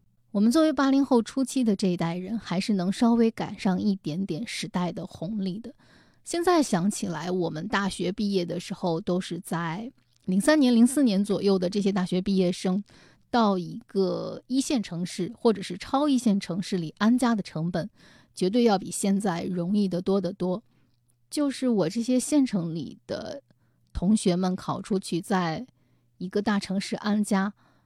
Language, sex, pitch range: Chinese, female, 180-230 Hz